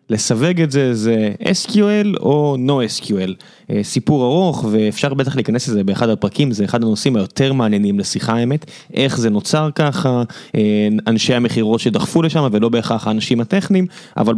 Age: 20-39